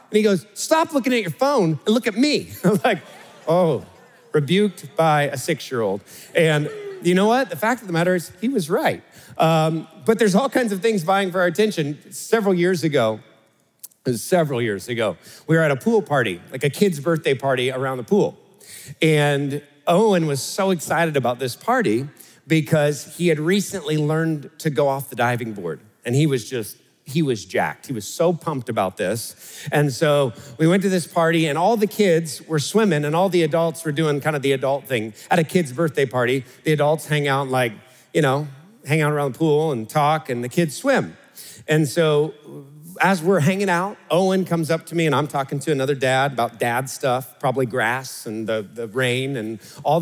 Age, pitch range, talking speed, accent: 40-59, 135-185 Hz, 205 wpm, American